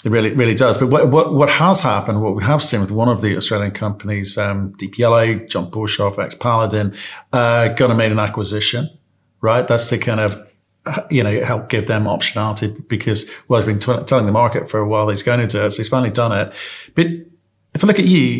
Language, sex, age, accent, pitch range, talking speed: English, male, 50-69, British, 105-140 Hz, 230 wpm